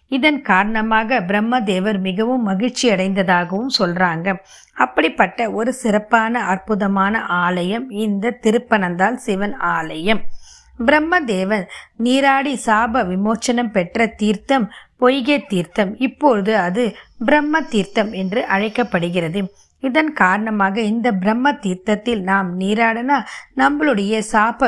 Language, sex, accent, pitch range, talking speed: Tamil, female, native, 195-250 Hz, 95 wpm